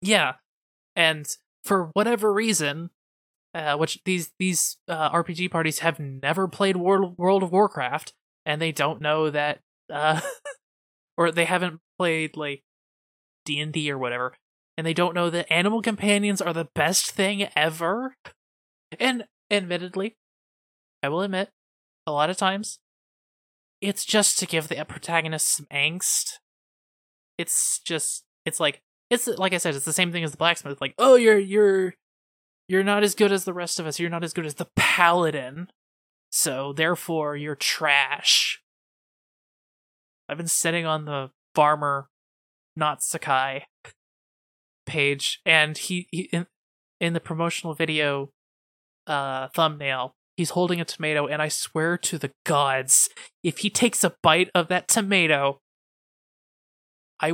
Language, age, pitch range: English, 20-39, 150-185 Hz